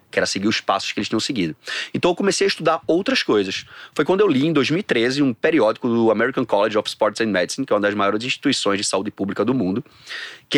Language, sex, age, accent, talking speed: Portuguese, male, 30-49, Brazilian, 245 wpm